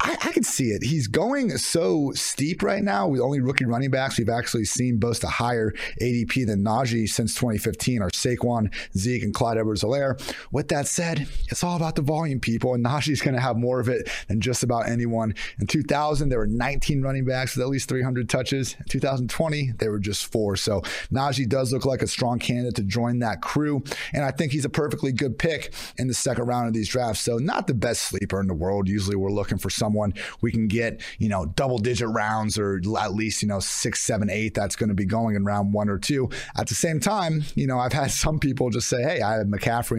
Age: 30-49